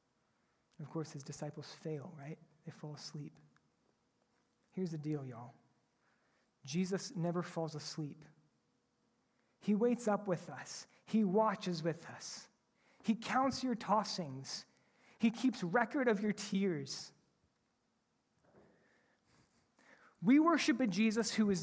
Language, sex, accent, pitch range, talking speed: English, male, American, 160-225 Hz, 115 wpm